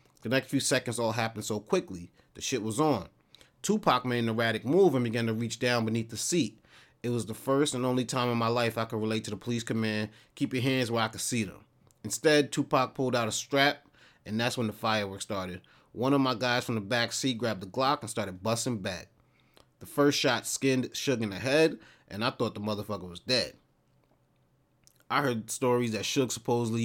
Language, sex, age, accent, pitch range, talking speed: English, male, 30-49, American, 110-140 Hz, 220 wpm